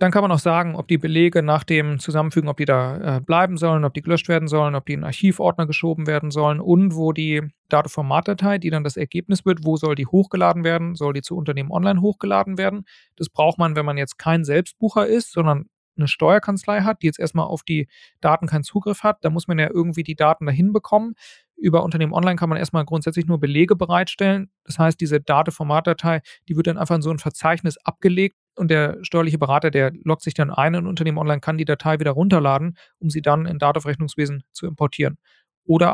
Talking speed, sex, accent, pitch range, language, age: 215 wpm, male, German, 150-175 Hz, German, 40-59